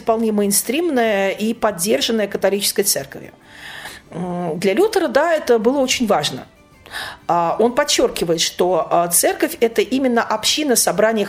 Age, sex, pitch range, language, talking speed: 40-59, female, 190-260 Hz, Russian, 110 wpm